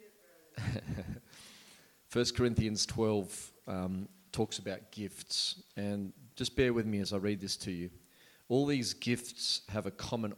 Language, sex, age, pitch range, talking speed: English, male, 30-49, 100-125 Hz, 140 wpm